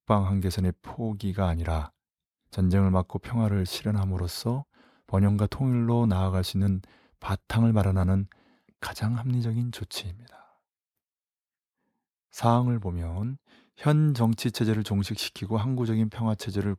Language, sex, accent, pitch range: Korean, male, native, 95-120 Hz